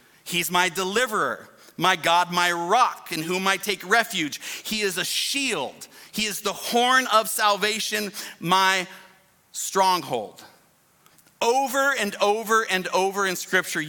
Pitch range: 175-220 Hz